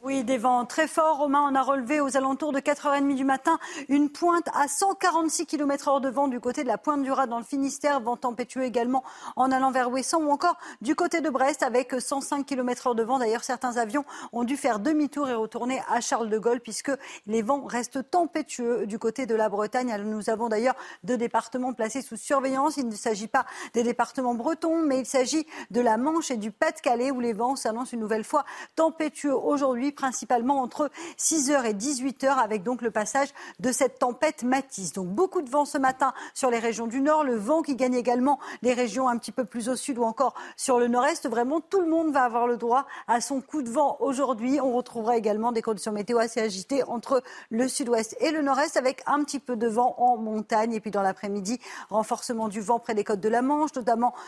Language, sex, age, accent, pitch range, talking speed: French, female, 40-59, French, 235-280 Hz, 220 wpm